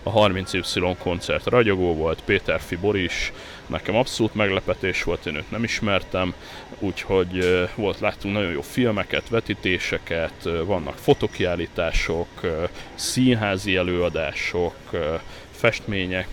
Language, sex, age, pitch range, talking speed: Hungarian, male, 30-49, 90-110 Hz, 105 wpm